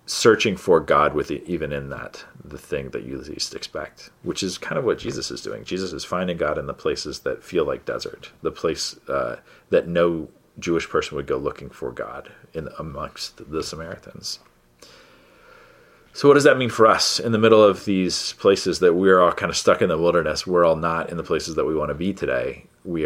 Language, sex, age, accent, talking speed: English, male, 40-59, American, 220 wpm